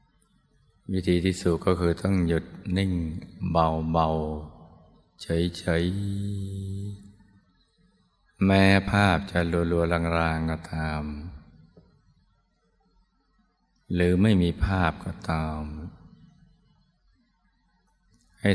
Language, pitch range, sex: Thai, 80-95 Hz, male